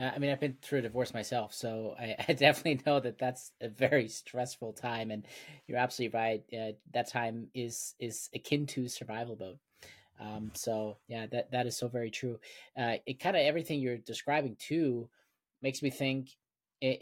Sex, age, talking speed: male, 30-49, 185 wpm